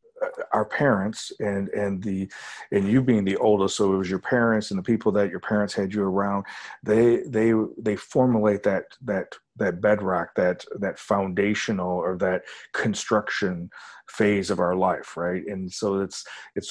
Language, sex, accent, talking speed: English, male, American, 170 wpm